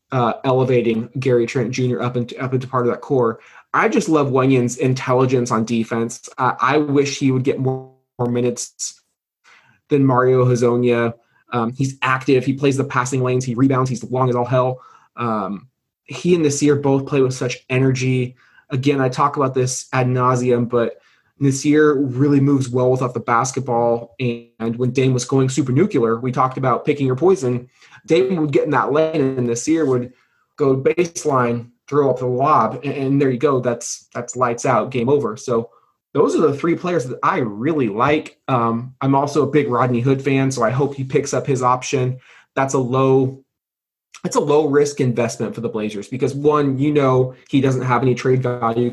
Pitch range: 120-140 Hz